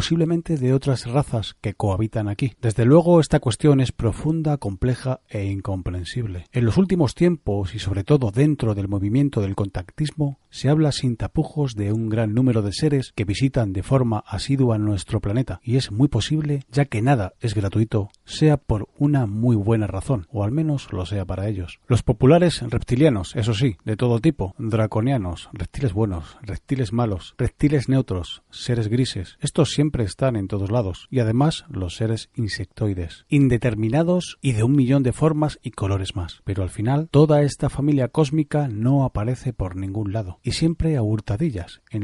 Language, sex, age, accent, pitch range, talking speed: Spanish, male, 40-59, Spanish, 105-140 Hz, 175 wpm